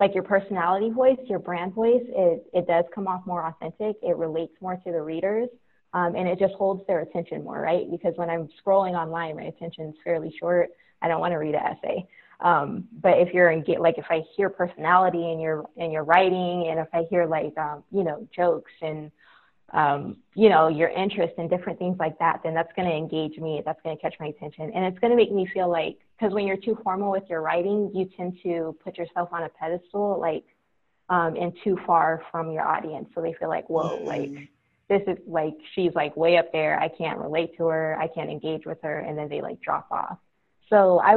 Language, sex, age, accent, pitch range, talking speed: English, female, 20-39, American, 165-195 Hz, 230 wpm